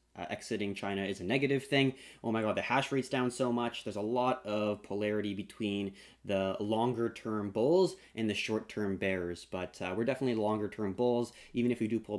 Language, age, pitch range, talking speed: English, 20-39, 100-125 Hz, 195 wpm